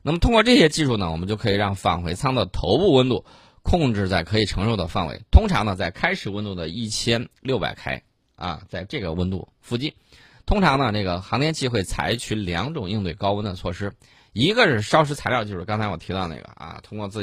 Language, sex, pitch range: Chinese, male, 95-125 Hz